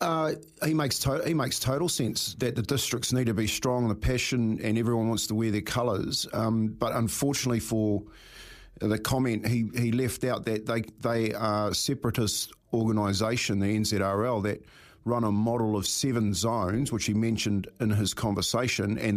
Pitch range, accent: 105-120 Hz, Australian